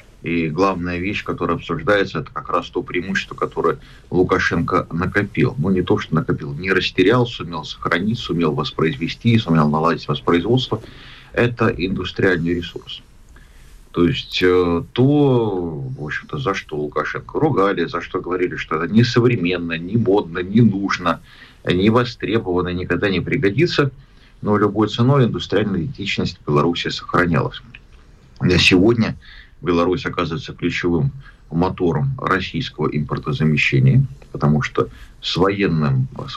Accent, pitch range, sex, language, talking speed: native, 80-120 Hz, male, Russian, 125 wpm